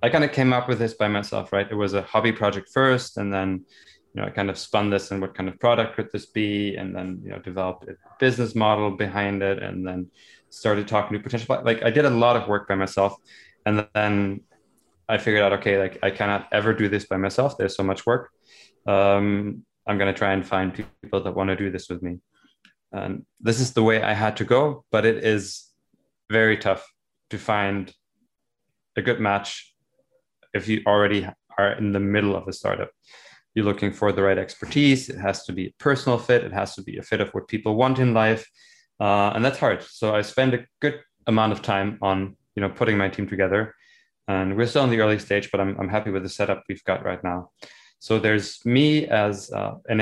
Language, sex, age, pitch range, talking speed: English, male, 20-39, 100-115 Hz, 225 wpm